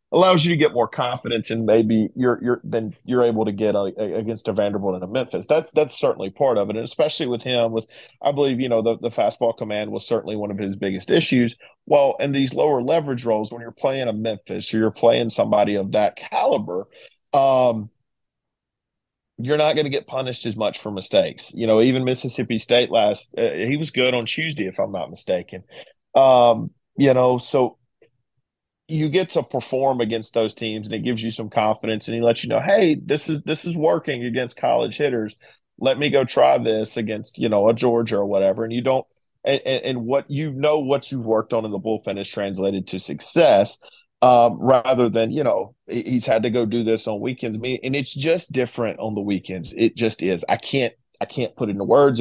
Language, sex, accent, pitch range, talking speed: English, male, American, 110-130 Hz, 215 wpm